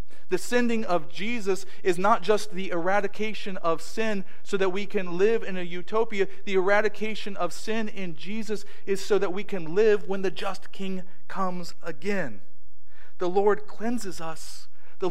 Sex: male